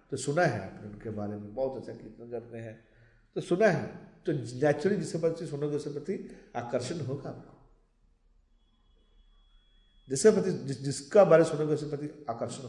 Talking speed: 130 wpm